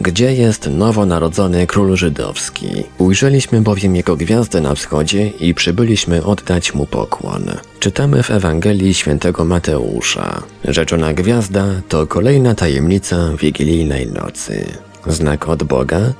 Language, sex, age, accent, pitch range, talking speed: Polish, male, 30-49, native, 85-105 Hz, 115 wpm